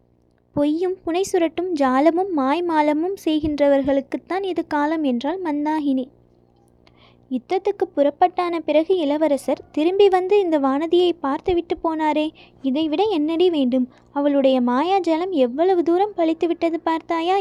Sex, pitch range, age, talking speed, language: female, 275-345 Hz, 20-39, 105 wpm, Tamil